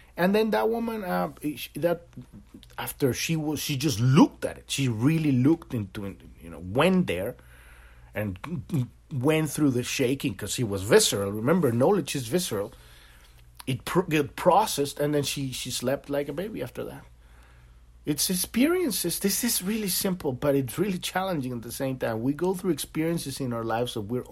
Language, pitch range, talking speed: English, 100-145 Hz, 175 wpm